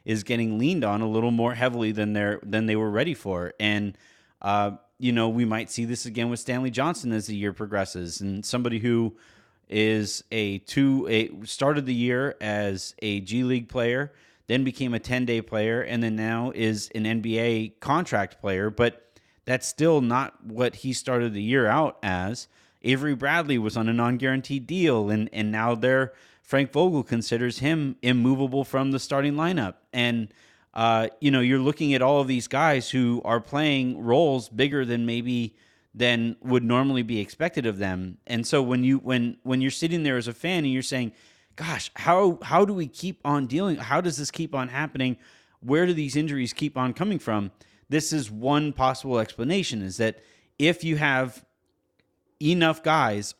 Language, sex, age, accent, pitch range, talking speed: English, male, 30-49, American, 110-135 Hz, 185 wpm